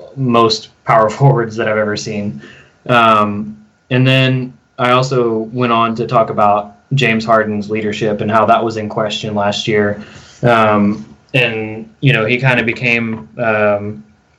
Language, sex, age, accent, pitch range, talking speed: English, male, 20-39, American, 105-120 Hz, 155 wpm